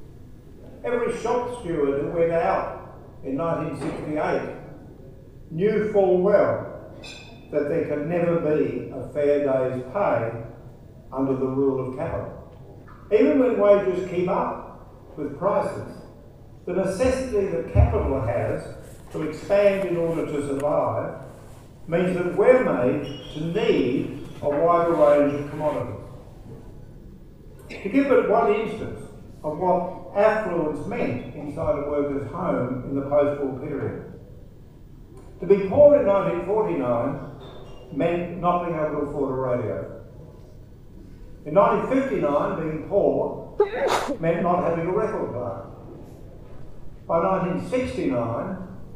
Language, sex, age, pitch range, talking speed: English, male, 50-69, 130-185 Hz, 120 wpm